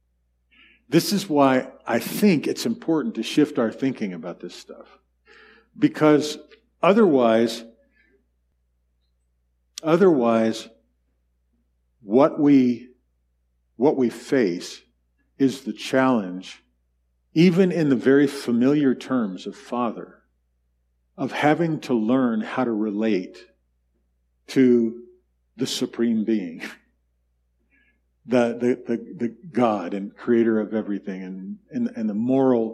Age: 50-69